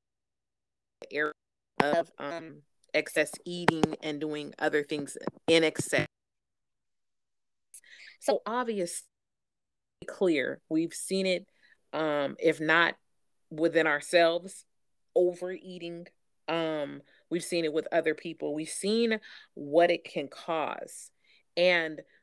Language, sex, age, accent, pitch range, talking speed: English, female, 30-49, American, 160-190 Hz, 100 wpm